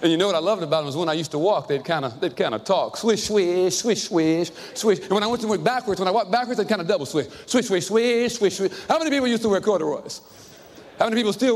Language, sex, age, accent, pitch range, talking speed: English, male, 40-59, American, 145-205 Hz, 285 wpm